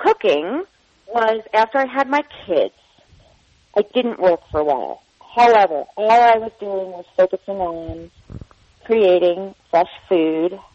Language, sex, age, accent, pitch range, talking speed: English, female, 40-59, American, 175-230 Hz, 135 wpm